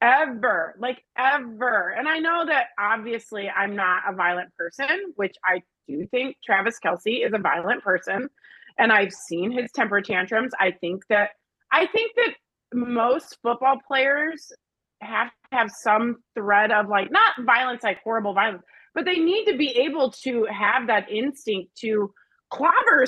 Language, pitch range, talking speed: English, 215-300 Hz, 160 wpm